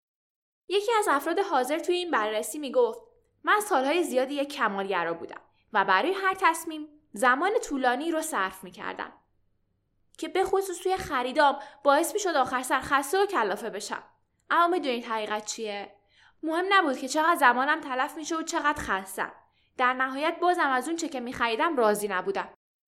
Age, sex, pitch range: 10-29, female, 225-330 Hz